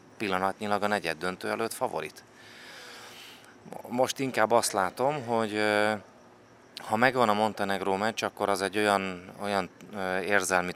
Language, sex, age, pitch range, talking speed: English, male, 30-49, 90-105 Hz, 125 wpm